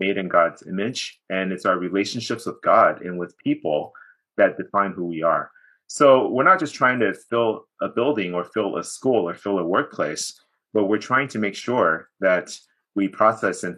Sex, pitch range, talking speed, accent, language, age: male, 95-110 Hz, 195 wpm, American, English, 30-49